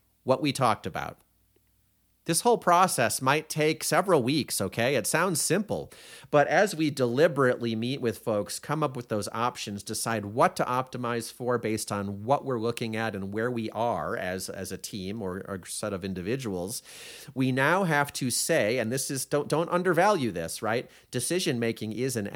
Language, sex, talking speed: English, male, 185 wpm